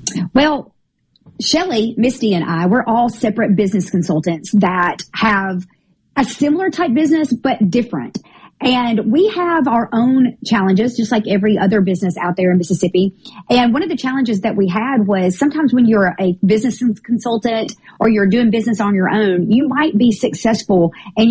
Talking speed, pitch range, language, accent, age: 170 wpm, 200-255 Hz, English, American, 40-59